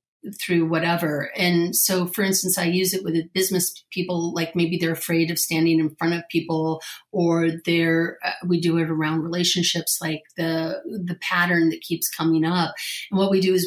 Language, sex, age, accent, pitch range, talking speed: English, female, 40-59, American, 165-190 Hz, 190 wpm